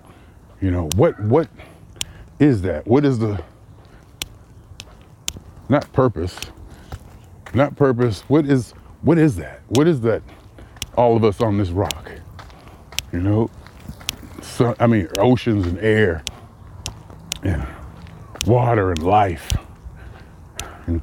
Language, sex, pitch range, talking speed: English, male, 85-130 Hz, 110 wpm